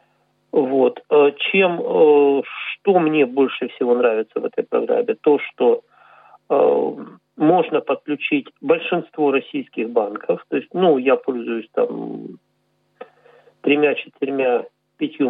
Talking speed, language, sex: 100 wpm, Russian, male